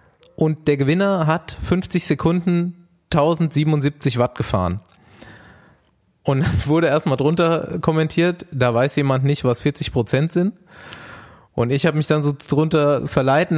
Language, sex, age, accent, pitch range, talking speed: German, male, 20-39, German, 130-165 Hz, 135 wpm